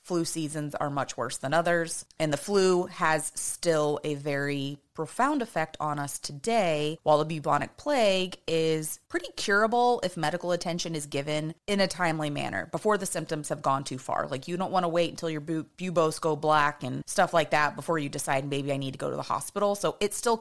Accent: American